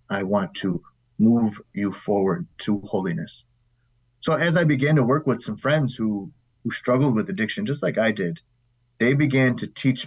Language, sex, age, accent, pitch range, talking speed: English, male, 30-49, American, 105-130 Hz, 180 wpm